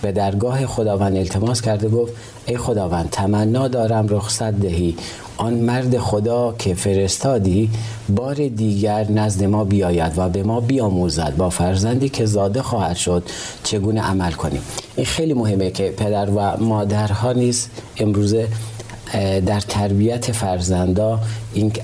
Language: Persian